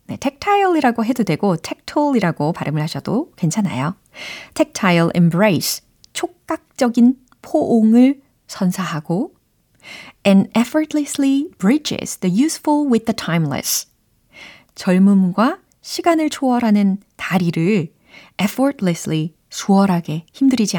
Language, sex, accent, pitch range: Korean, female, native, 170-255 Hz